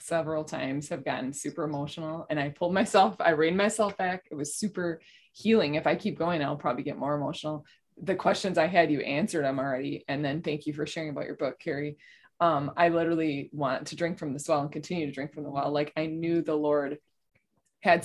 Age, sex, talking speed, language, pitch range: 20-39, female, 225 wpm, English, 155-195 Hz